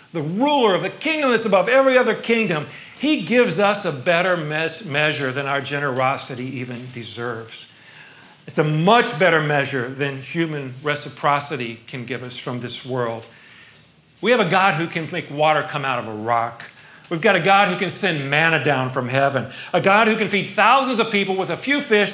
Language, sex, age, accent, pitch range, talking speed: English, male, 50-69, American, 130-195 Hz, 195 wpm